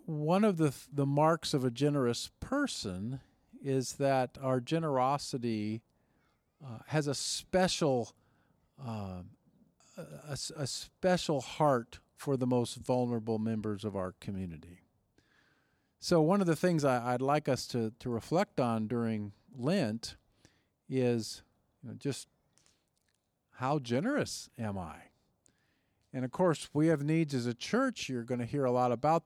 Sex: male